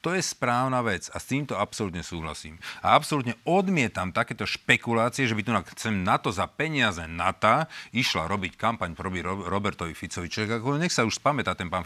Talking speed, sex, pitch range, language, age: 185 wpm, male, 95-125 Hz, Slovak, 40-59